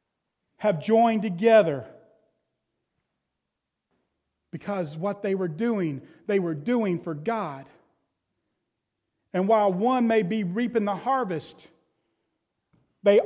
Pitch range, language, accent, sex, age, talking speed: 165-225 Hz, English, American, male, 40-59, 100 wpm